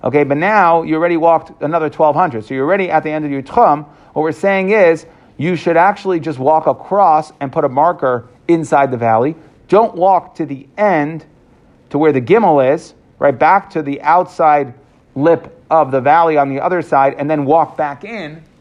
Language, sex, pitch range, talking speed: English, male, 140-180 Hz, 200 wpm